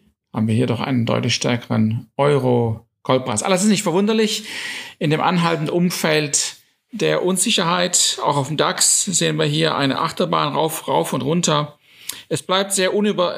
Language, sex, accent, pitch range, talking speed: German, male, German, 135-180 Hz, 155 wpm